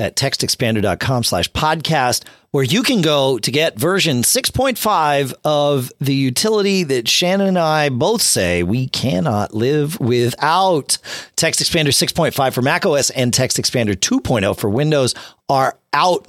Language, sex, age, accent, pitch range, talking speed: English, male, 40-59, American, 120-175 Hz, 145 wpm